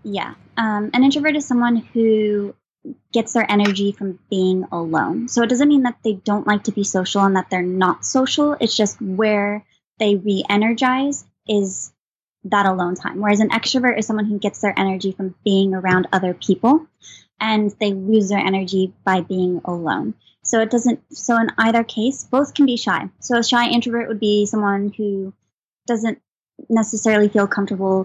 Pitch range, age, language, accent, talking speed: 195-225 Hz, 20-39, English, American, 180 wpm